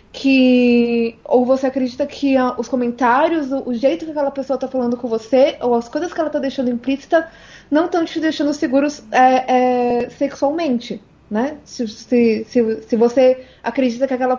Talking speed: 180 wpm